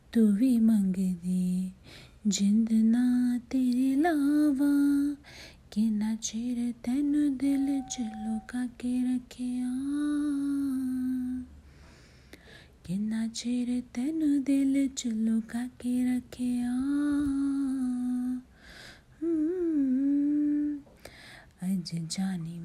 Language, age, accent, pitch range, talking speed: Hindi, 30-49, native, 225-270 Hz, 70 wpm